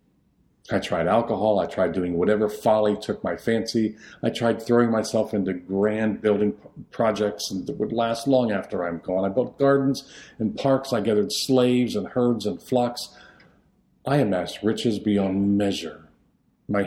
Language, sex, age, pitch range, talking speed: English, male, 50-69, 95-115 Hz, 155 wpm